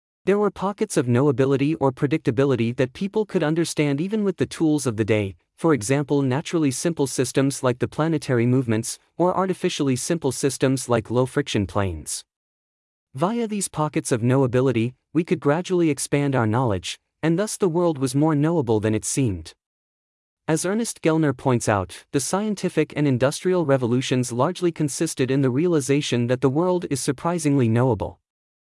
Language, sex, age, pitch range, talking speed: English, male, 30-49, 125-165 Hz, 160 wpm